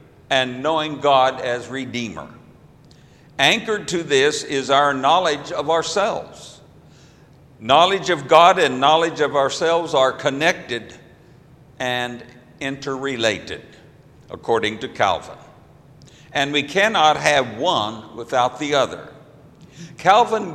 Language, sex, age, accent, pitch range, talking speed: English, male, 60-79, American, 135-165 Hz, 105 wpm